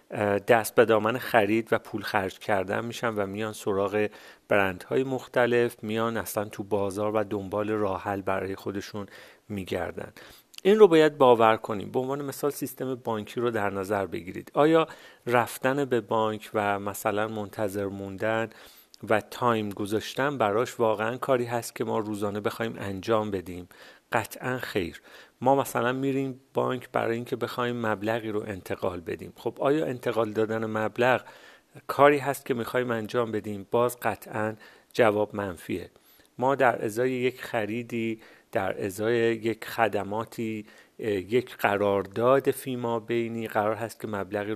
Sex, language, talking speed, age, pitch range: male, Persian, 145 wpm, 40-59, 105-125 Hz